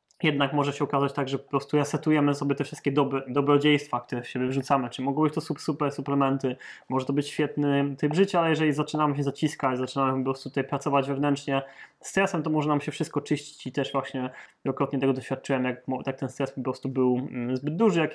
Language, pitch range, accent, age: Polish, 130-145 Hz, native, 20-39